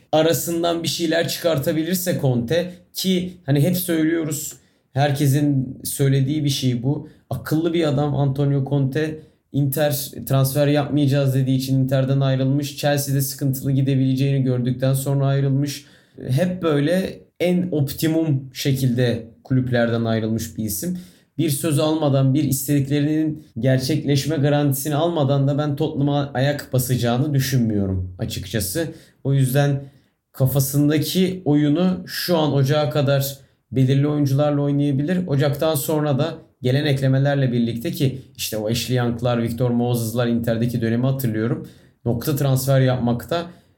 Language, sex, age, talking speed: Turkish, male, 30-49, 120 wpm